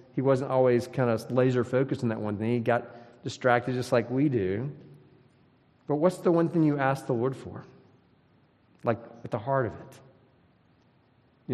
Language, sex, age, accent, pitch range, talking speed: English, male, 40-59, American, 115-140 Hz, 180 wpm